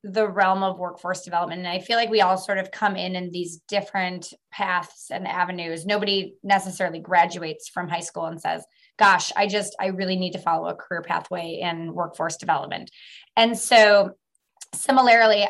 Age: 20-39